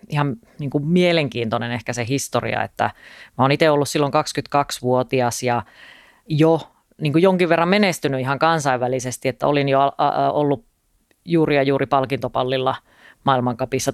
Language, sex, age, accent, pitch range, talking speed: Finnish, female, 30-49, native, 130-155 Hz, 130 wpm